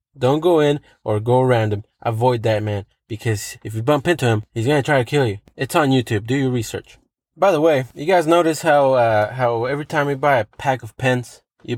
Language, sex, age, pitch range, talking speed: English, male, 20-39, 115-155 Hz, 240 wpm